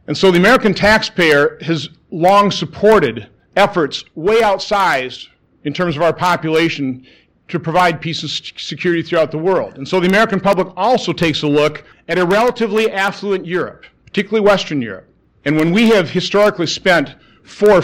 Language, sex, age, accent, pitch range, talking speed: English, male, 50-69, American, 160-200 Hz, 160 wpm